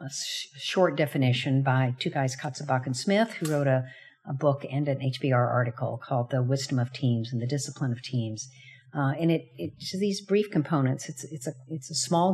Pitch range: 135-170 Hz